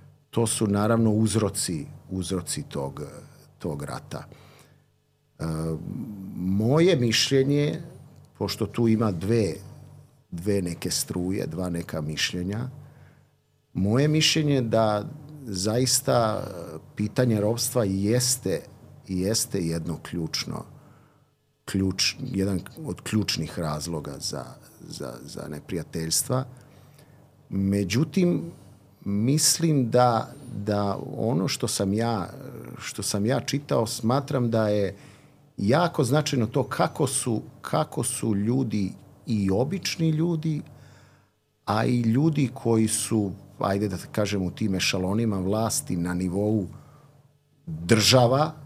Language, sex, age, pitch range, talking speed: English, male, 50-69, 100-135 Hz, 100 wpm